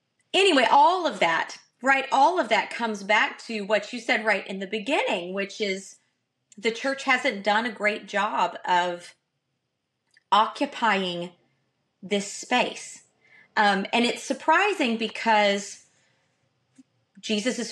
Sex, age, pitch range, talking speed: female, 30-49, 195-240 Hz, 125 wpm